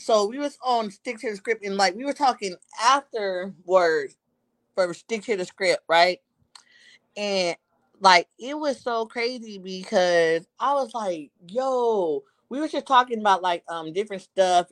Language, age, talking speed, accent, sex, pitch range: English, 30-49, 165 wpm, American, female, 175-215 Hz